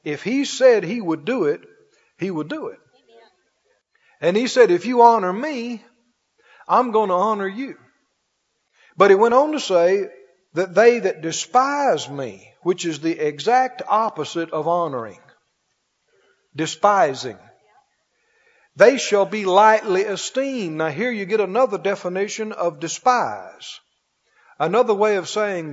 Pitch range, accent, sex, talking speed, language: 165-225 Hz, American, male, 140 wpm, English